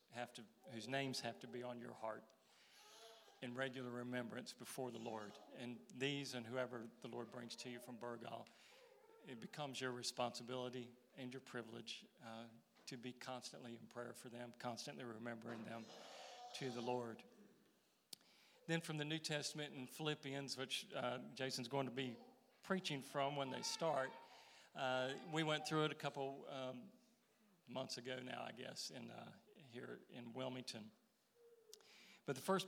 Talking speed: 160 wpm